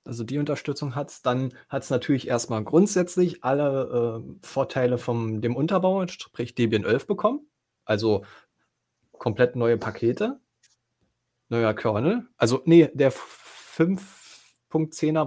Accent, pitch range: German, 115-170 Hz